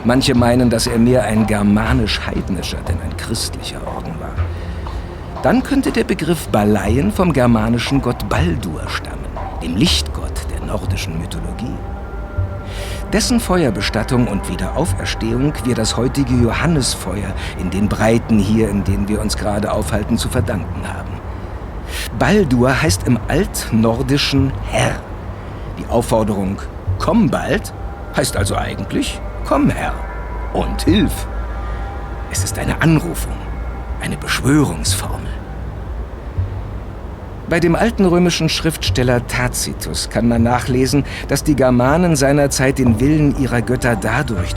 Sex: male